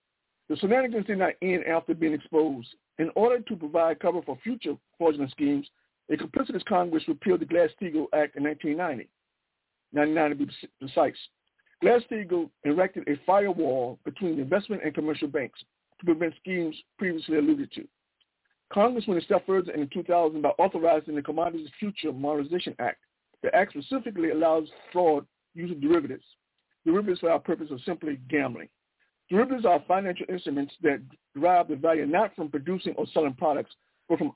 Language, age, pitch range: English, 50-69, 150-200 Hz